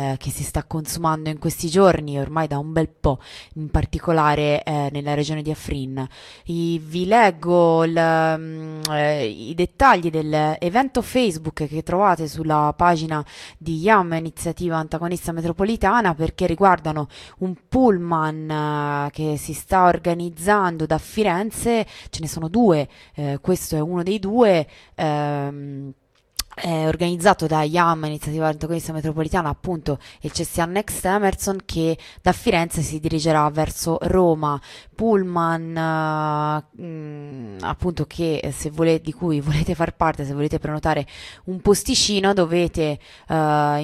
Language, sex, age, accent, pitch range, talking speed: Italian, female, 20-39, native, 150-175 Hz, 135 wpm